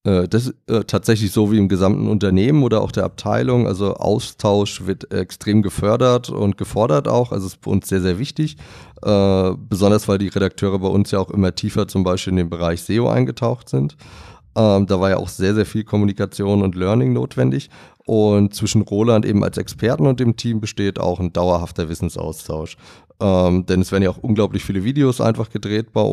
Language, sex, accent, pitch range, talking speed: German, male, German, 90-110 Hz, 195 wpm